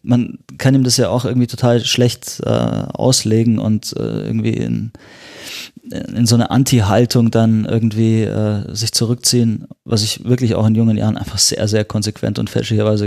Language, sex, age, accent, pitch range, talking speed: German, male, 20-39, German, 110-125 Hz, 175 wpm